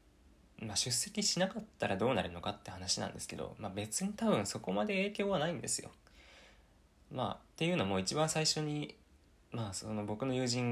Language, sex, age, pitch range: Japanese, male, 20-39, 90-130 Hz